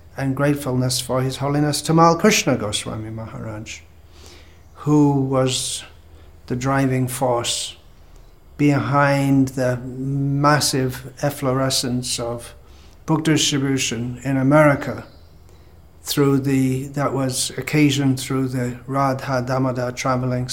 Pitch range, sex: 90-140 Hz, male